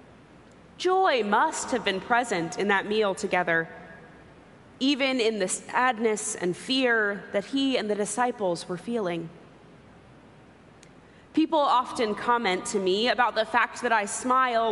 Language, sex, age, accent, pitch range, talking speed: English, female, 20-39, American, 200-265 Hz, 135 wpm